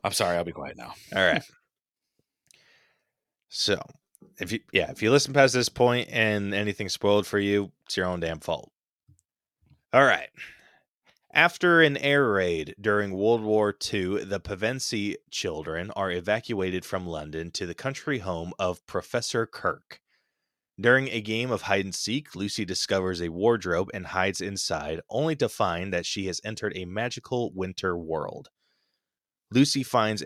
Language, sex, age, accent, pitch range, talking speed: English, male, 20-39, American, 90-110 Hz, 155 wpm